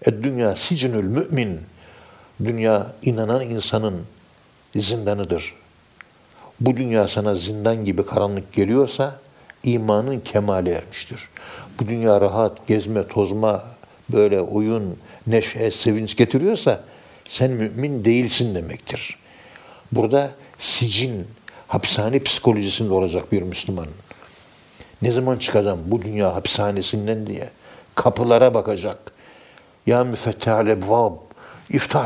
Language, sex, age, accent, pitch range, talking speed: Turkish, male, 60-79, native, 100-120 Hz, 90 wpm